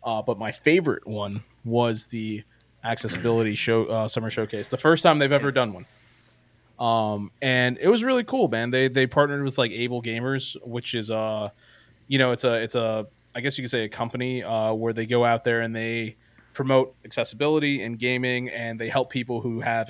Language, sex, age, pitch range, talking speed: English, male, 20-39, 115-130 Hz, 200 wpm